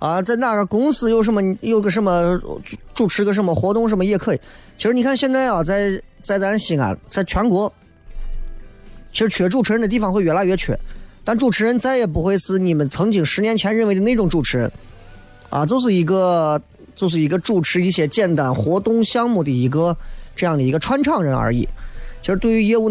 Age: 20-39